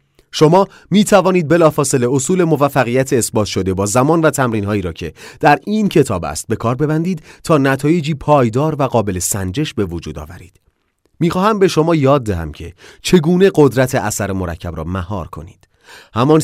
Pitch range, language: 105-160 Hz, Persian